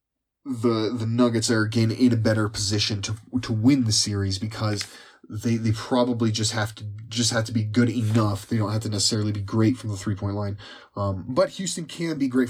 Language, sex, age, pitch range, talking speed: English, male, 20-39, 100-120 Hz, 210 wpm